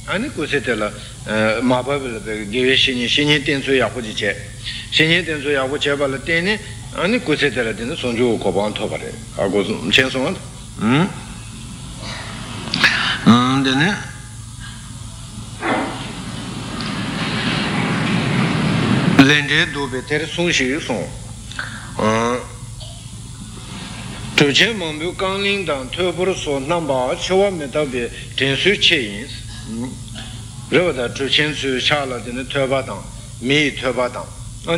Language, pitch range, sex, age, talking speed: Italian, 115-145 Hz, male, 60-79, 90 wpm